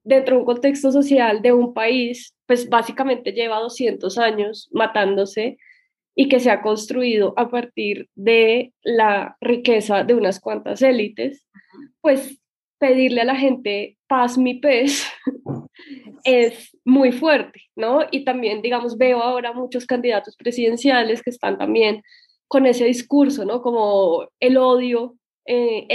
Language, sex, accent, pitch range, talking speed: Spanish, female, Colombian, 230-275 Hz, 135 wpm